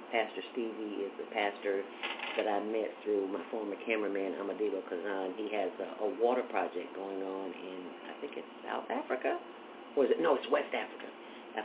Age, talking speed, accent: 50-69, 180 wpm, American